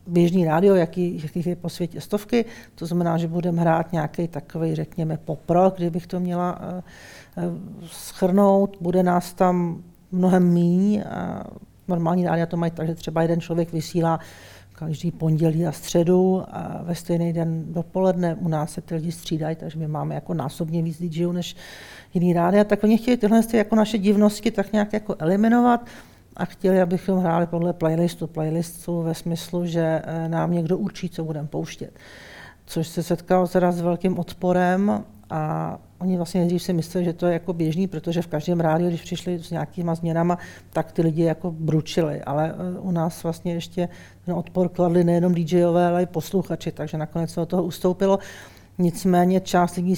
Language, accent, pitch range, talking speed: Czech, native, 165-180 Hz, 170 wpm